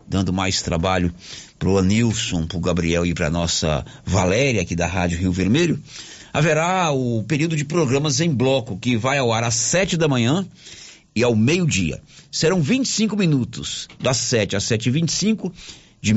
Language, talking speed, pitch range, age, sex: Portuguese, 165 wpm, 100-135 Hz, 50-69, male